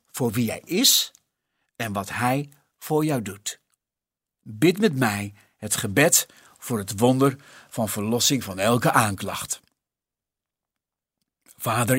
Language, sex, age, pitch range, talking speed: Dutch, male, 50-69, 120-155 Hz, 120 wpm